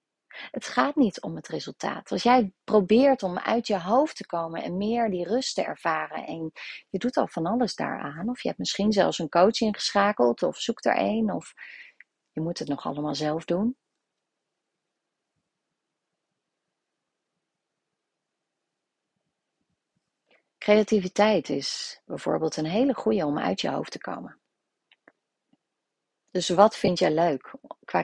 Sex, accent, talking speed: female, Dutch, 140 wpm